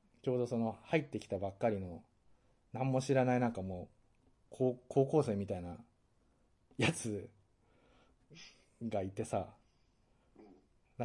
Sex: male